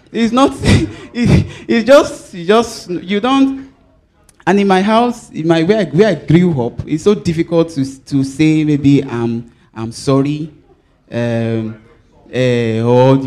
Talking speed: 140 wpm